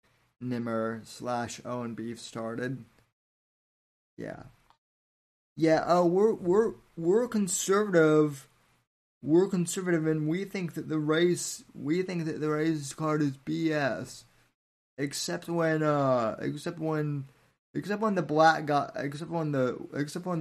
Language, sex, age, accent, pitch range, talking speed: English, male, 20-39, American, 120-160 Hz, 125 wpm